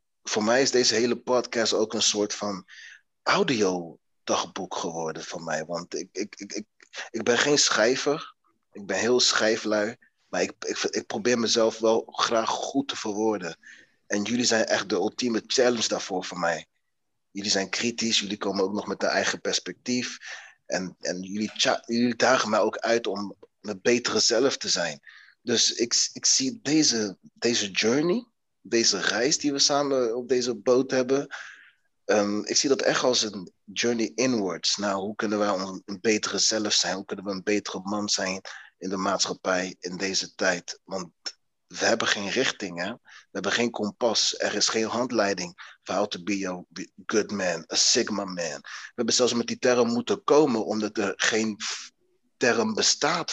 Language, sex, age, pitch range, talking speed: Dutch, male, 30-49, 95-120 Hz, 175 wpm